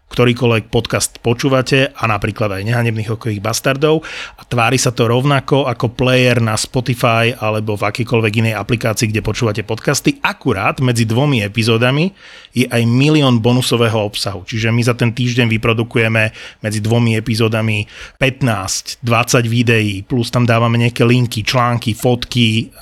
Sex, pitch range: male, 110-125 Hz